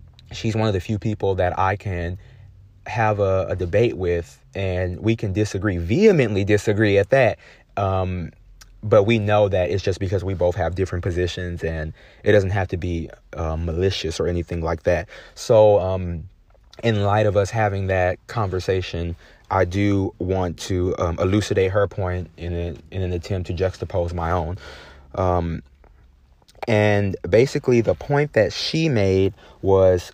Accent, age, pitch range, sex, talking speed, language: American, 30-49, 85-105 Hz, male, 160 wpm, English